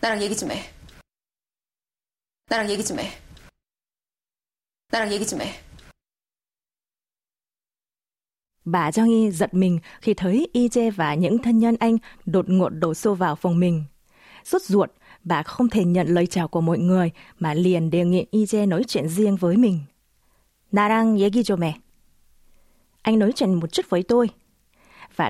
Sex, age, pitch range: female, 20-39, 175-225 Hz